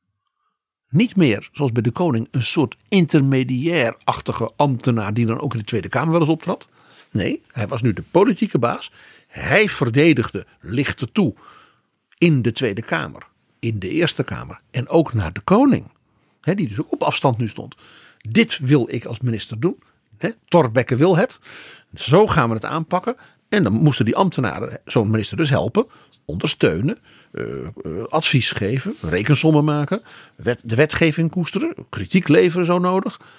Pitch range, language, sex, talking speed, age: 115-165 Hz, Dutch, male, 160 wpm, 50-69